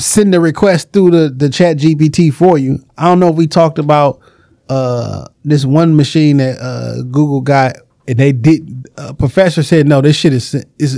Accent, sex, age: American, male, 20-39